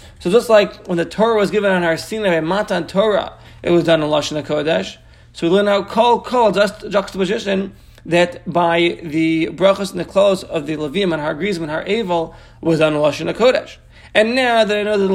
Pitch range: 165-200 Hz